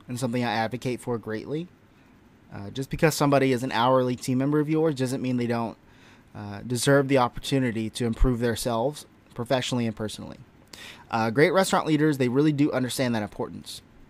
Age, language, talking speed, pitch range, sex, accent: 20-39, English, 175 wpm, 115-145 Hz, male, American